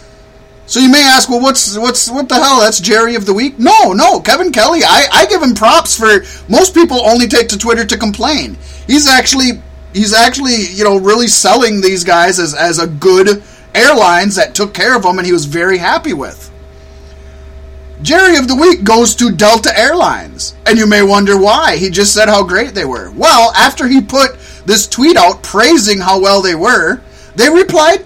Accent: American